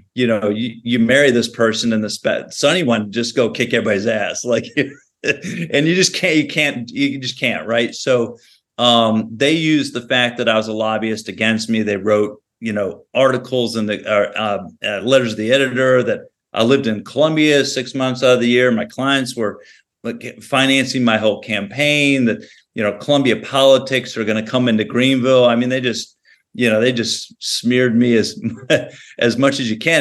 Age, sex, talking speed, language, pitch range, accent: 40-59, male, 195 wpm, English, 115-135 Hz, American